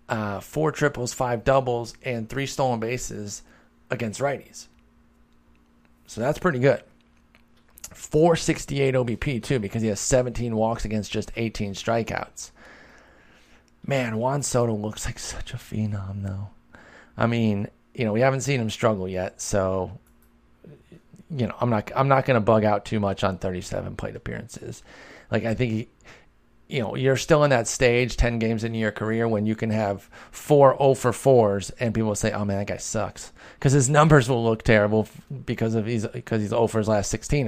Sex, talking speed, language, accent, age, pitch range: male, 180 wpm, English, American, 30-49, 105-125 Hz